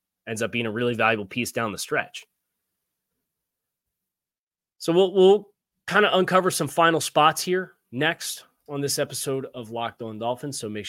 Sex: male